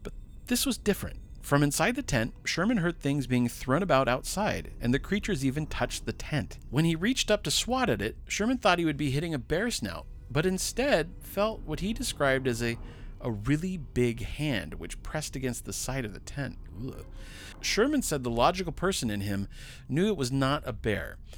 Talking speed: 200 wpm